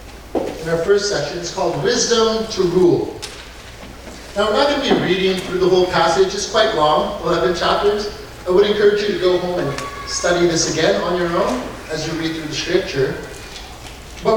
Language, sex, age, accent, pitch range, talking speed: English, male, 40-59, American, 160-205 Hz, 190 wpm